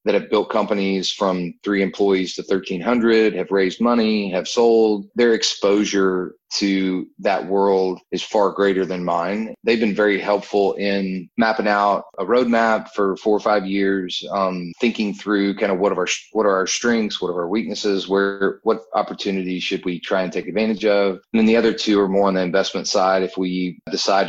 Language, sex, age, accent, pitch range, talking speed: English, male, 30-49, American, 95-105 Hz, 195 wpm